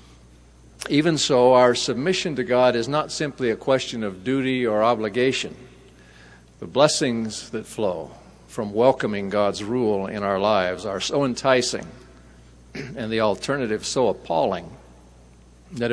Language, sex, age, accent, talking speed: English, male, 50-69, American, 130 wpm